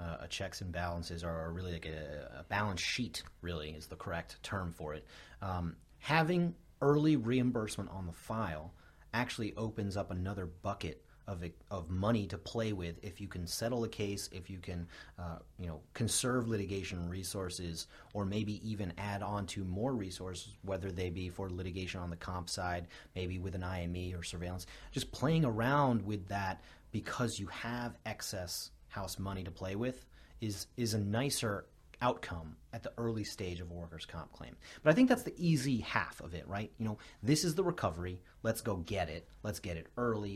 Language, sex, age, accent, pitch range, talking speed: English, male, 30-49, American, 85-110 Hz, 185 wpm